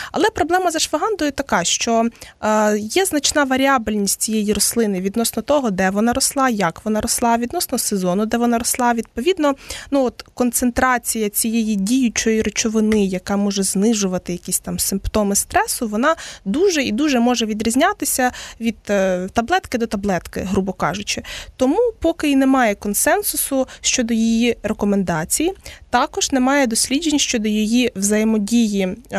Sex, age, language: female, 20-39, Ukrainian